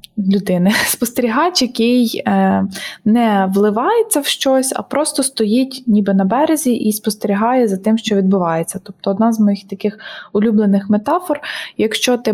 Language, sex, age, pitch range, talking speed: Ukrainian, female, 20-39, 200-240 Hz, 140 wpm